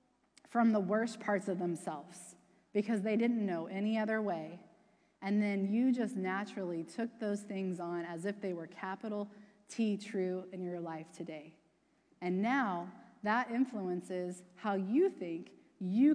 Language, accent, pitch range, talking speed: English, American, 175-225 Hz, 150 wpm